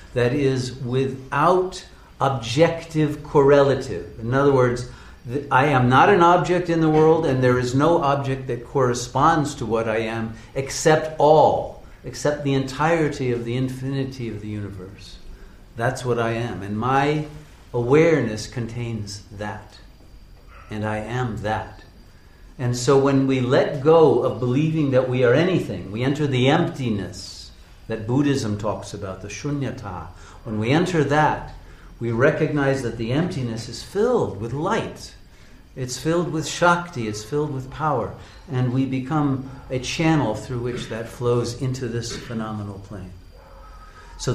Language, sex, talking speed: English, male, 145 wpm